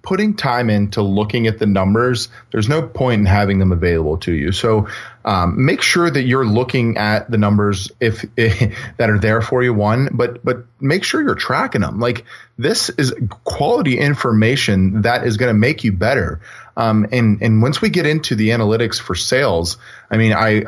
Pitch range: 100-125 Hz